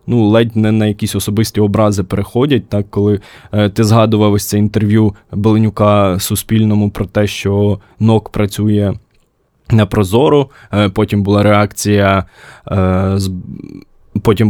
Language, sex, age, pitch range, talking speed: Ukrainian, male, 20-39, 100-115 Hz, 125 wpm